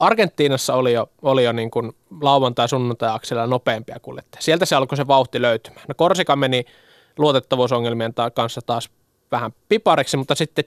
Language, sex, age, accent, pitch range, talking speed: Finnish, male, 20-39, native, 125-150 Hz, 145 wpm